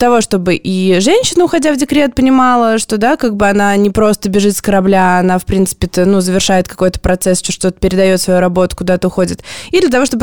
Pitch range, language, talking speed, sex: 190-245 Hz, Russian, 225 wpm, female